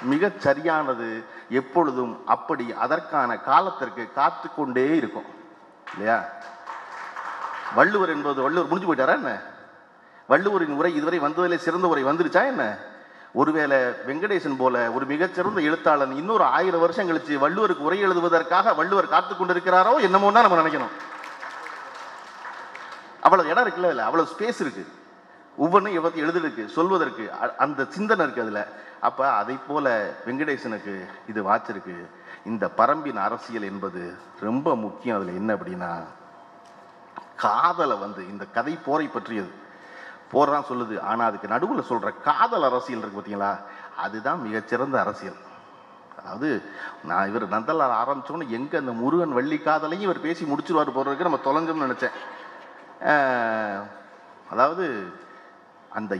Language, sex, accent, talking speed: Tamil, male, native, 110 wpm